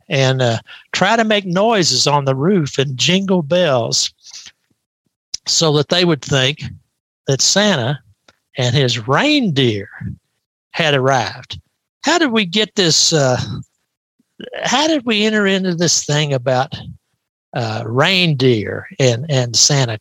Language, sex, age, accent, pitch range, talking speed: English, male, 60-79, American, 130-180 Hz, 130 wpm